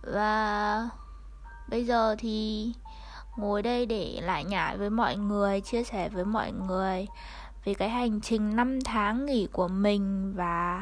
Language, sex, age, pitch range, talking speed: Vietnamese, female, 20-39, 200-245 Hz, 150 wpm